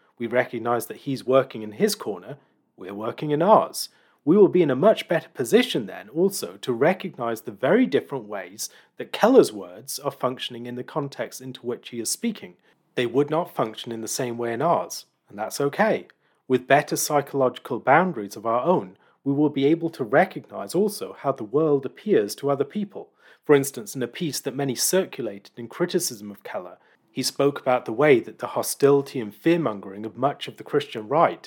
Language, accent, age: English, British, 40-59